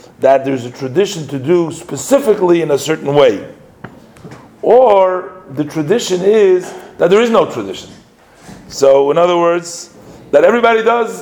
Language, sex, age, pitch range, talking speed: English, male, 40-59, 140-185 Hz, 145 wpm